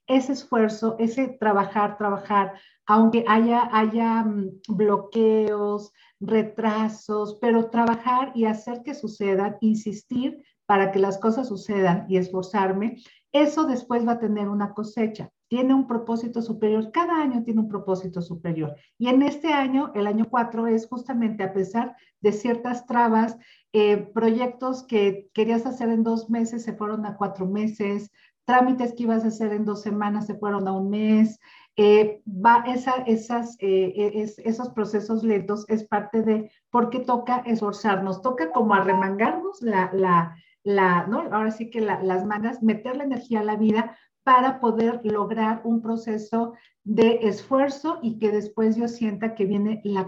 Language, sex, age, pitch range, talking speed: Spanish, female, 50-69, 205-235 Hz, 155 wpm